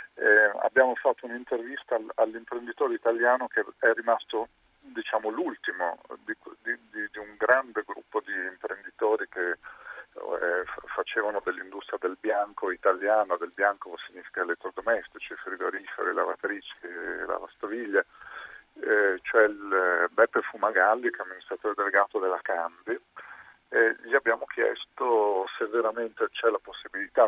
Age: 50-69